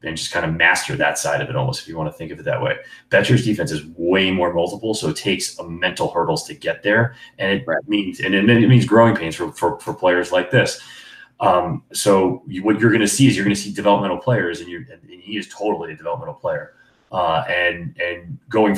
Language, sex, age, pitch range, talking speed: English, male, 30-49, 90-105 Hz, 245 wpm